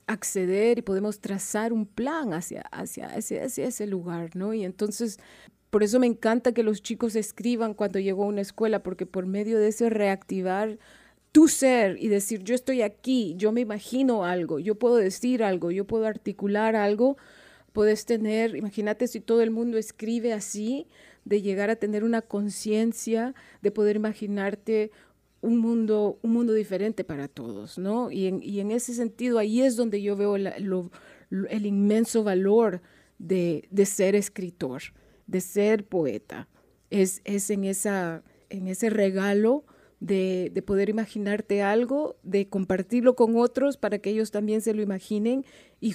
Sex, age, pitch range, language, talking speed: female, 30-49, 195-230 Hz, Spanish, 165 wpm